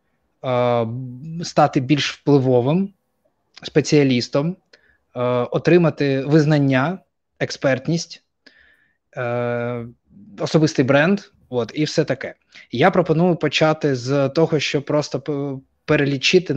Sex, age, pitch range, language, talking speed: male, 20-39, 120-155 Hz, Ukrainian, 75 wpm